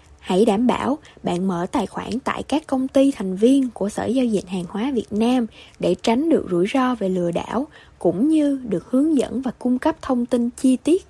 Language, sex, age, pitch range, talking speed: Vietnamese, female, 20-39, 195-265 Hz, 220 wpm